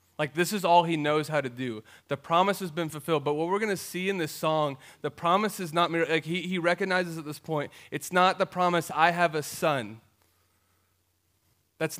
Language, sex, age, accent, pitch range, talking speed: English, male, 30-49, American, 120-165 Hz, 220 wpm